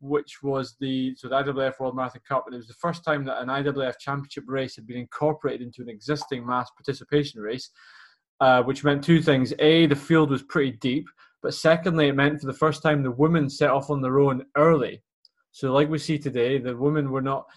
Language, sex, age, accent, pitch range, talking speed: English, male, 20-39, British, 135-155 Hz, 220 wpm